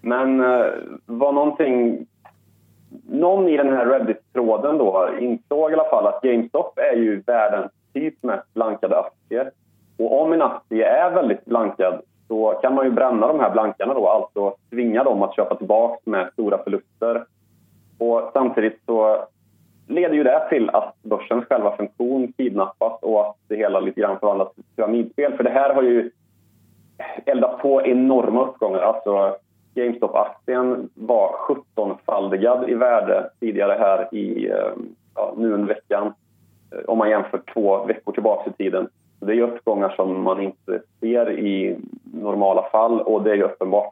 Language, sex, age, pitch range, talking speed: Swedish, male, 30-49, 100-120 Hz, 155 wpm